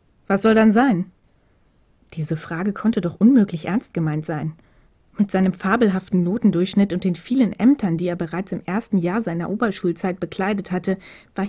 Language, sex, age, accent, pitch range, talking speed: German, female, 20-39, German, 180-215 Hz, 160 wpm